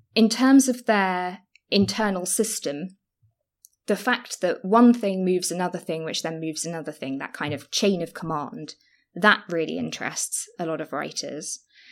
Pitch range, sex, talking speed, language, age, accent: 160-215 Hz, female, 160 wpm, English, 20-39, British